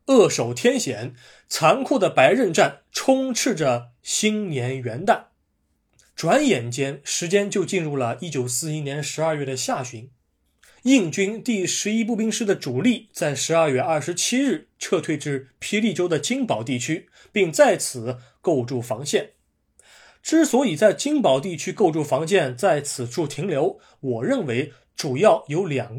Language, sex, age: Chinese, male, 20-39